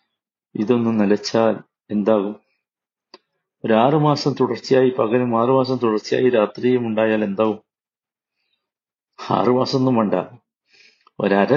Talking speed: 80 wpm